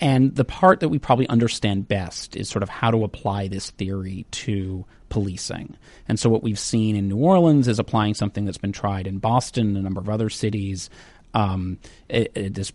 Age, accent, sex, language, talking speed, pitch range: 30-49, American, male, English, 200 wpm, 100-115 Hz